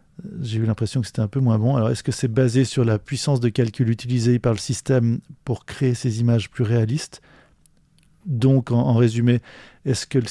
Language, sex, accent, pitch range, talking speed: French, male, French, 110-130 Hz, 210 wpm